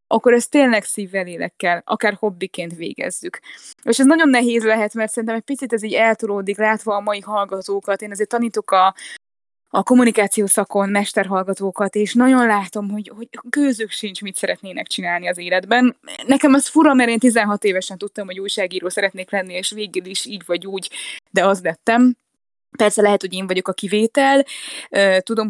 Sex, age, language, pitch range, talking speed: female, 20-39, Hungarian, 190-230 Hz, 170 wpm